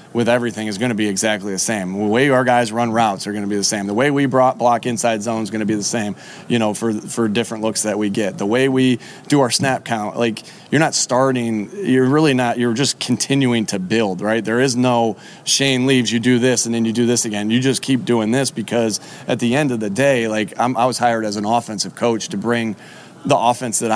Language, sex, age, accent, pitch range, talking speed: English, male, 30-49, American, 110-125 Hz, 265 wpm